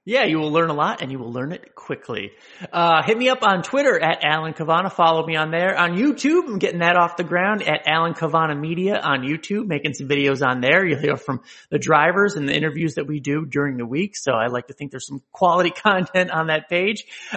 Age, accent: 30-49, American